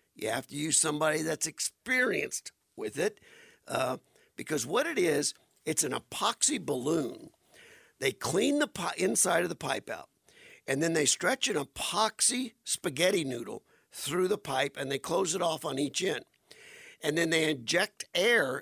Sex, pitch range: male, 150-245 Hz